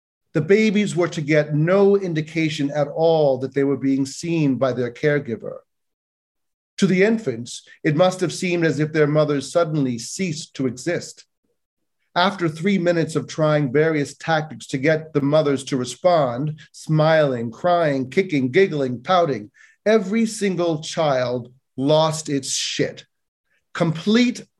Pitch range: 135-175 Hz